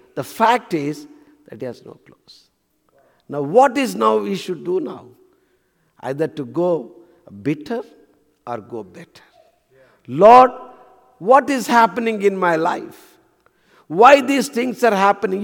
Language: English